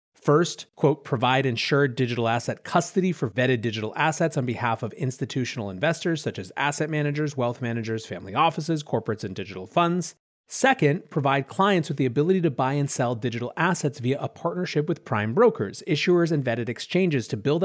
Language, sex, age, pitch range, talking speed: English, male, 30-49, 125-170 Hz, 175 wpm